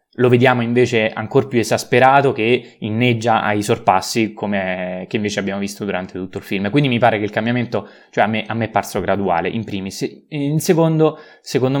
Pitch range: 100-125 Hz